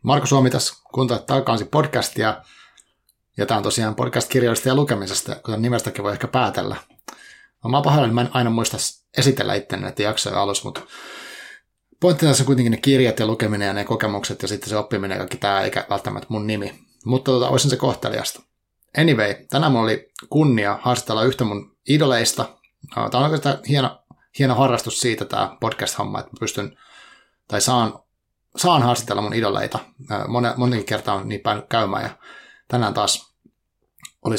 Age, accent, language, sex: 30-49, native, Finnish, male